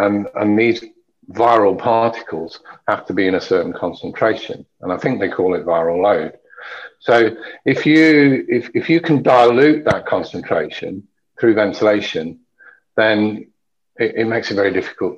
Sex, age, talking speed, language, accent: male, 50-69, 145 wpm, English, British